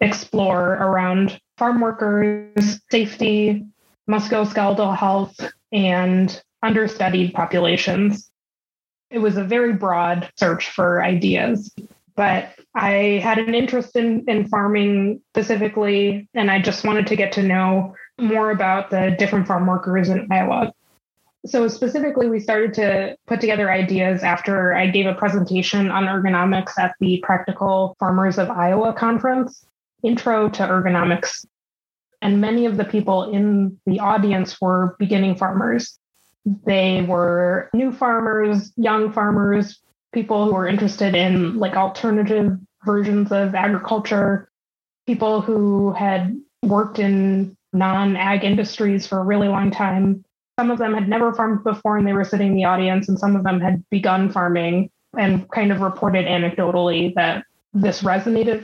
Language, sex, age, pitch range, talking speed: English, female, 20-39, 190-215 Hz, 140 wpm